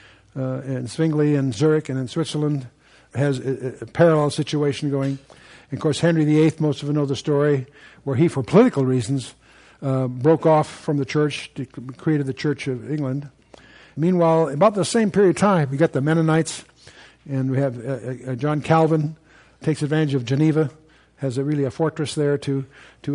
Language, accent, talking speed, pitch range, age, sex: English, American, 185 wpm, 130-150 Hz, 60-79, male